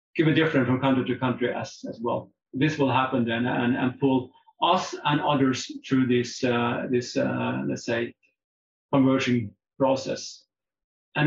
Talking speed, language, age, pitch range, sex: 150 wpm, English, 40-59, 130-165 Hz, male